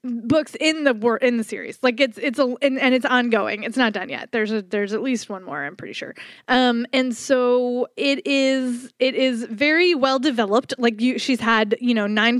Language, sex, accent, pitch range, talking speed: English, female, American, 230-300 Hz, 225 wpm